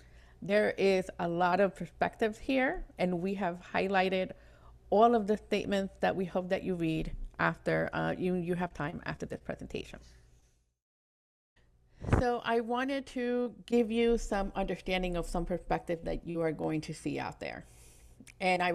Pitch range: 165-205 Hz